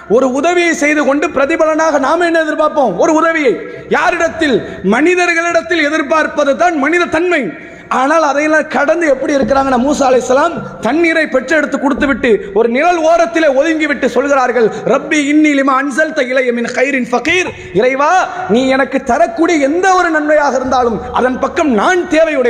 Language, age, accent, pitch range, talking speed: English, 30-49, Indian, 260-320 Hz, 135 wpm